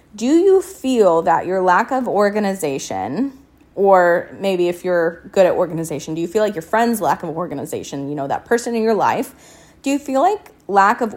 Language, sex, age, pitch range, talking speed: English, female, 20-39, 175-225 Hz, 200 wpm